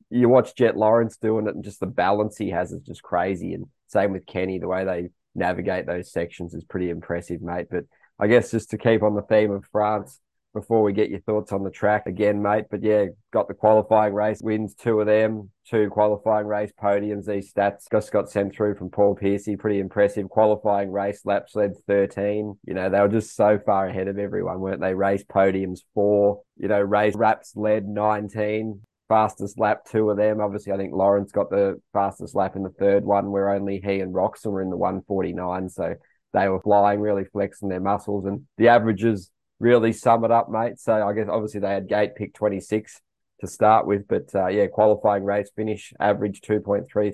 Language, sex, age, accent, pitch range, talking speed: English, male, 20-39, Australian, 95-105 Hz, 215 wpm